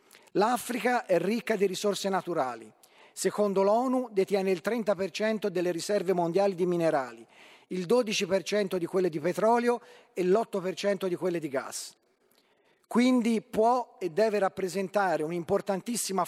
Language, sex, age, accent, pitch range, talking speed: Italian, male, 40-59, native, 180-220 Hz, 125 wpm